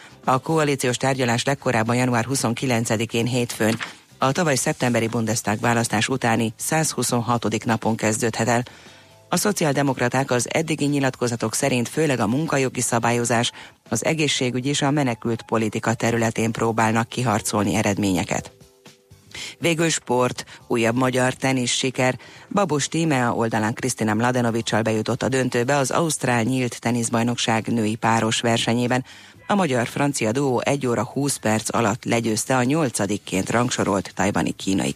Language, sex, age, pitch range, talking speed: Hungarian, female, 30-49, 115-130 Hz, 125 wpm